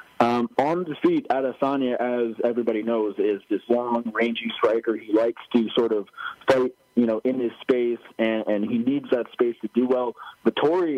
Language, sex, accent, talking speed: English, male, American, 180 wpm